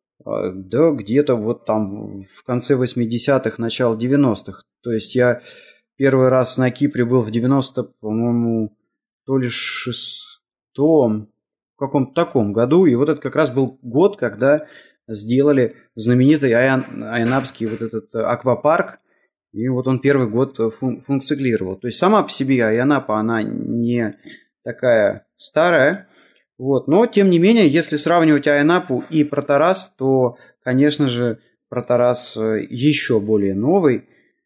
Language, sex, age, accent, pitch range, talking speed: Russian, male, 20-39, native, 110-140 Hz, 125 wpm